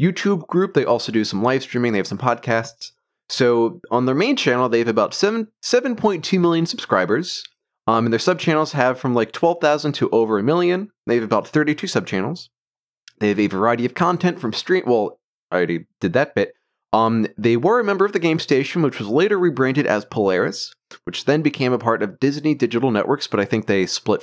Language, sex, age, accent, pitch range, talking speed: English, male, 30-49, American, 115-165 Hz, 220 wpm